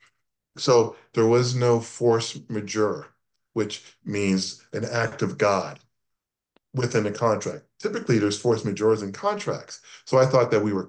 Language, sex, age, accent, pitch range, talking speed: English, male, 40-59, American, 105-130 Hz, 150 wpm